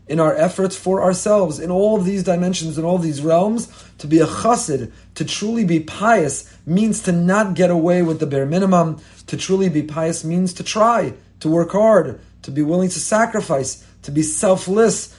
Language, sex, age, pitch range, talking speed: English, male, 30-49, 150-195 Hz, 195 wpm